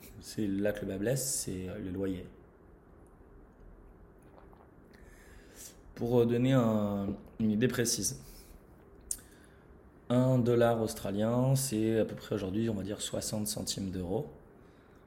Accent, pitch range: French, 95-115 Hz